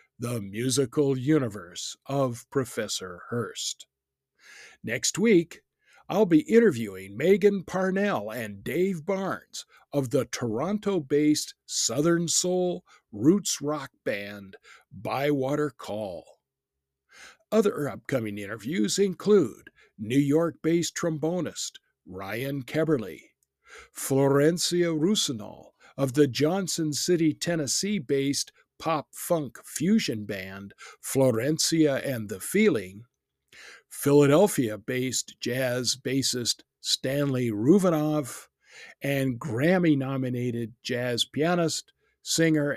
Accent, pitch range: American, 115-165 Hz